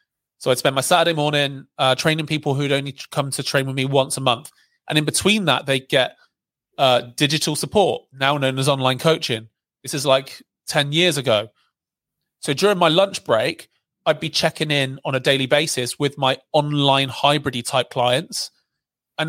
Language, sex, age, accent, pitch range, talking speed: English, male, 30-49, British, 130-155 Hz, 185 wpm